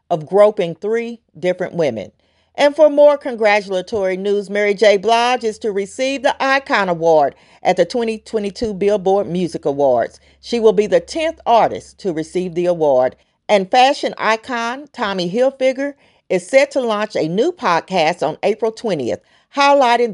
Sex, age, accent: female, 40-59, American